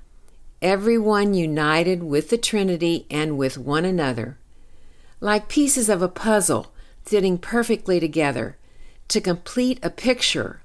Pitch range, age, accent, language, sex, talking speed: 125-190 Hz, 60-79, American, English, female, 120 wpm